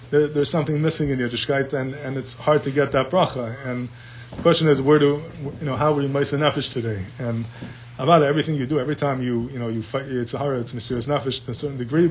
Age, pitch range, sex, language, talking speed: 20-39, 125-150 Hz, male, English, 245 wpm